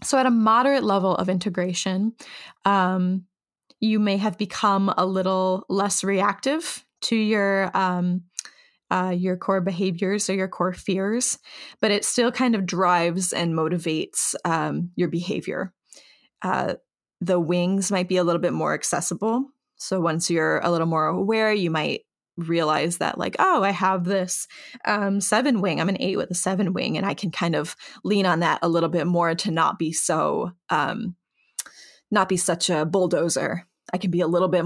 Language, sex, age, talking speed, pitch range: English, female, 20-39, 175 wpm, 175-200 Hz